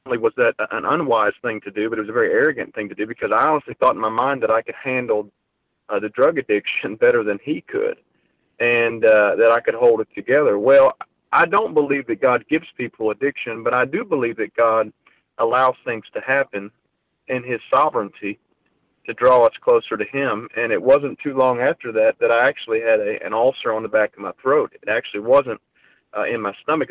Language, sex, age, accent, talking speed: English, male, 40-59, American, 220 wpm